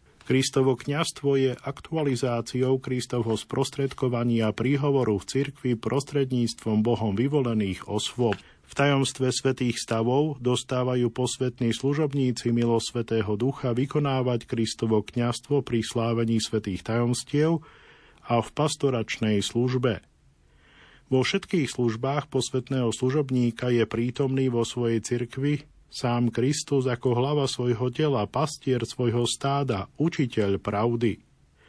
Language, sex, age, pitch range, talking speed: Slovak, male, 50-69, 115-140 Hz, 100 wpm